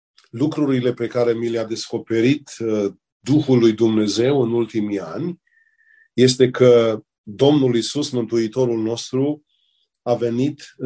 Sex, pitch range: male, 115-135 Hz